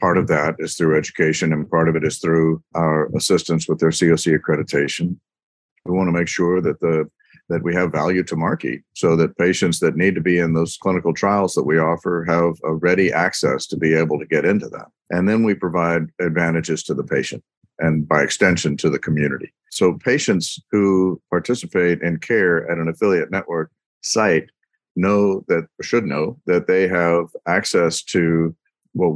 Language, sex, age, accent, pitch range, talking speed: English, male, 50-69, American, 80-90 Hz, 190 wpm